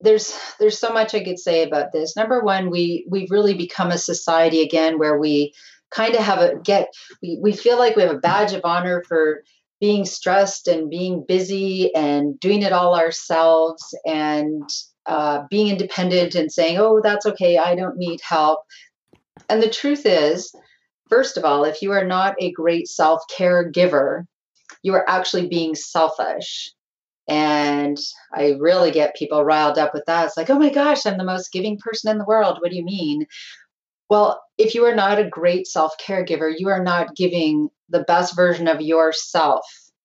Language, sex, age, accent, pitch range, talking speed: English, female, 40-59, American, 160-195 Hz, 185 wpm